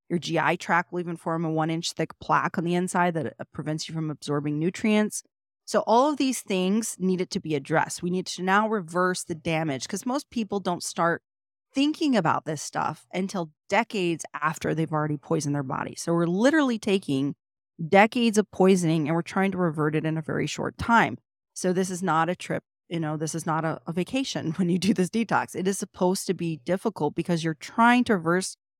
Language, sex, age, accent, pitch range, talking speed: English, female, 30-49, American, 160-195 Hz, 210 wpm